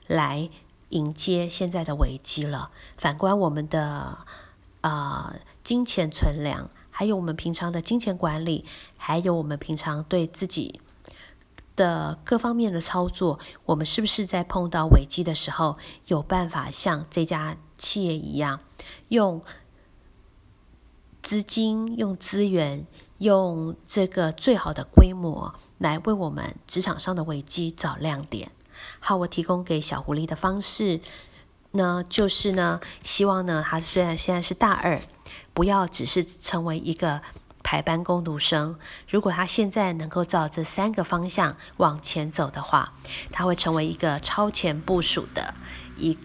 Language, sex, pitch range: Chinese, female, 155-185 Hz